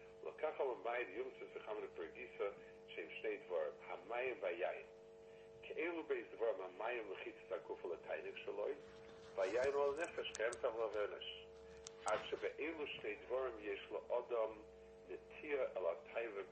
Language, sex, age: English, male, 50-69